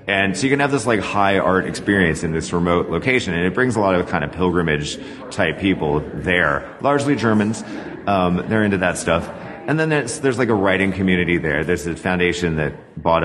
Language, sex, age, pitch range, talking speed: English, male, 30-49, 85-115 Hz, 210 wpm